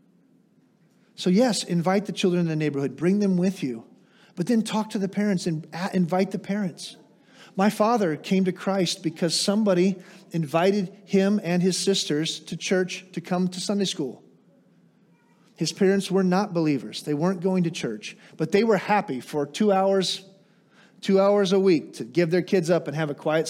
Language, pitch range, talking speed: English, 155-195 Hz, 180 wpm